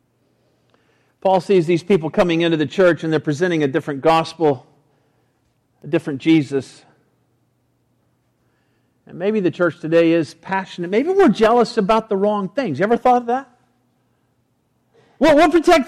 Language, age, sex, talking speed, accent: English, 50-69, male, 145 wpm, American